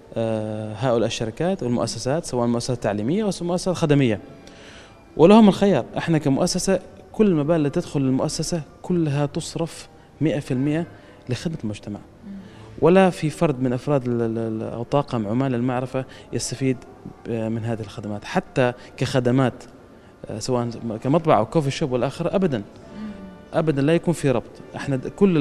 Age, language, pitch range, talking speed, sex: 20-39, Arabic, 115-150 Hz, 120 wpm, male